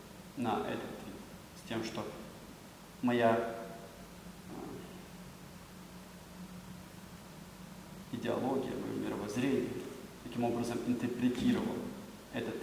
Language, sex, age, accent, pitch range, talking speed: Russian, male, 20-39, native, 115-130 Hz, 60 wpm